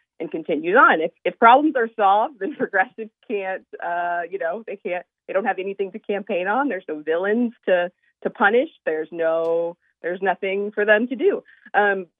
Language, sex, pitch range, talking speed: English, female, 175-215 Hz, 170 wpm